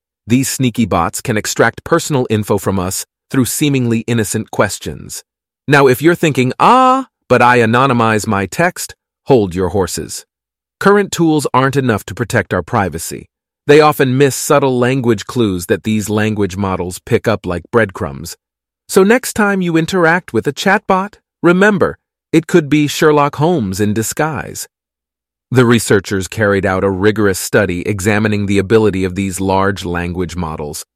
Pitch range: 100-135 Hz